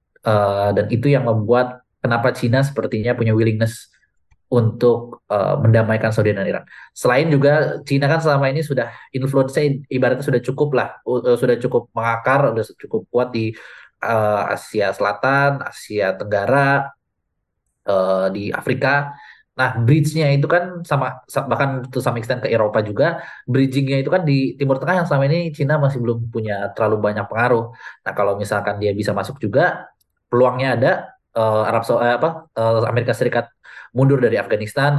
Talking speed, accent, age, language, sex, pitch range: 160 wpm, native, 20-39, Indonesian, male, 110-140 Hz